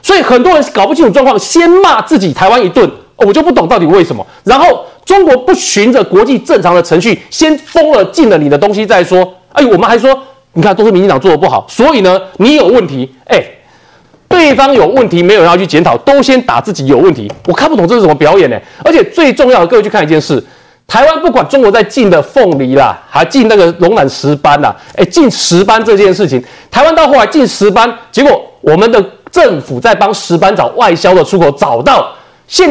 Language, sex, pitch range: Chinese, male, 185-285 Hz